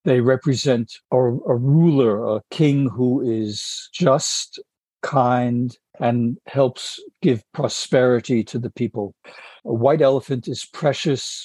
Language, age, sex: English, 60-79, male